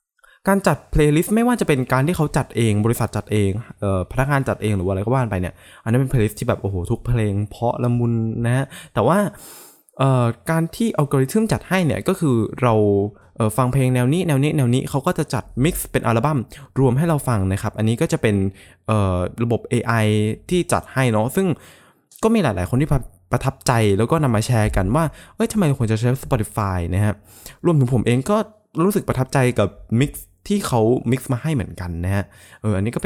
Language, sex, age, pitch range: Thai, male, 20-39, 105-150 Hz